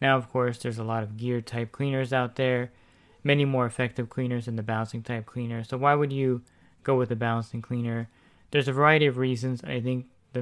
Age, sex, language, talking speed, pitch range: 20-39, male, English, 220 wpm, 115-130 Hz